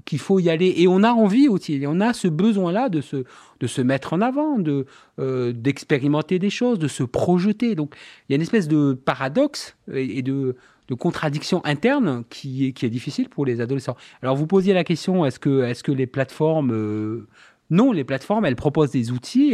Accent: French